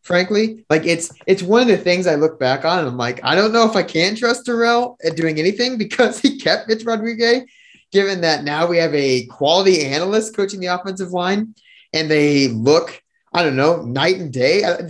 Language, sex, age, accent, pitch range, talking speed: English, male, 20-39, American, 130-180 Hz, 215 wpm